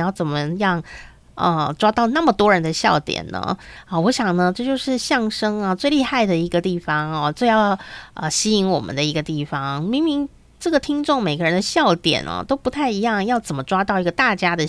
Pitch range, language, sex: 170-225 Hz, Chinese, female